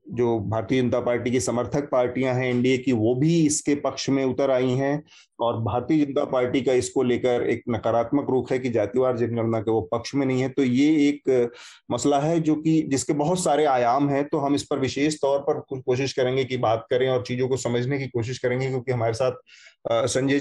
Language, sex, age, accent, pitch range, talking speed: Hindi, male, 30-49, native, 125-150 Hz, 215 wpm